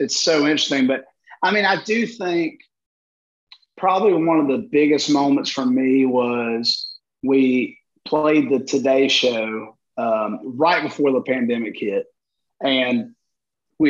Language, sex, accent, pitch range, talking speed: English, male, American, 130-165 Hz, 135 wpm